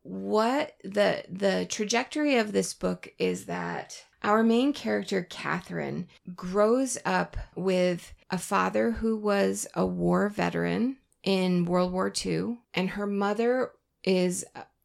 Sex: female